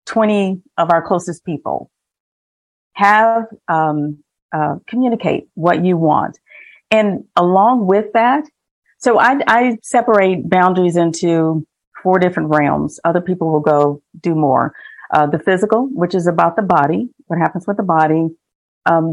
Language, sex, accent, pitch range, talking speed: English, female, American, 155-195 Hz, 140 wpm